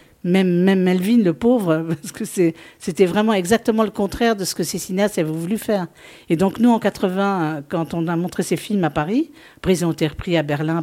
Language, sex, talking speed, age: French, female, 225 wpm, 50-69